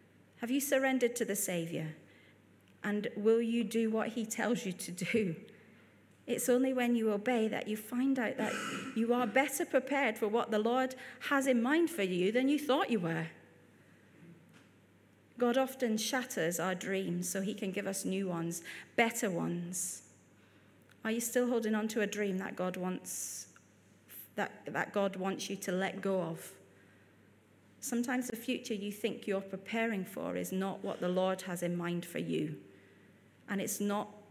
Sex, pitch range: female, 175-240 Hz